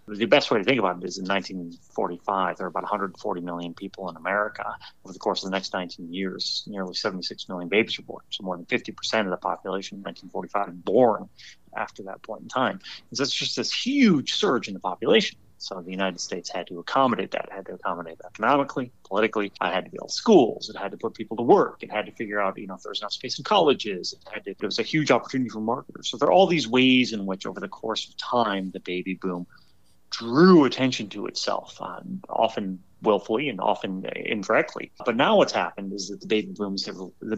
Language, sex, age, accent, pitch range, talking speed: English, male, 30-49, American, 95-120 Hz, 225 wpm